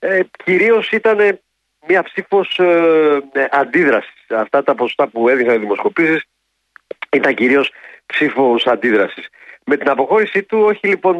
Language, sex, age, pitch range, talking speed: Greek, male, 40-59, 125-185 Hz, 130 wpm